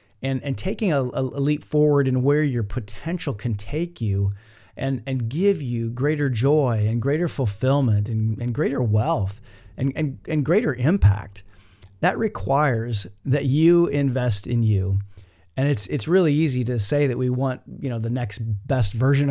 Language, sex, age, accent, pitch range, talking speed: English, male, 40-59, American, 110-145 Hz, 170 wpm